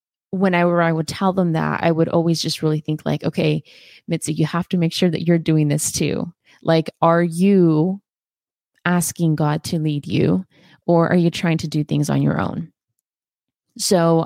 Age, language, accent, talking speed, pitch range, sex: 20-39, English, American, 185 wpm, 155-185 Hz, female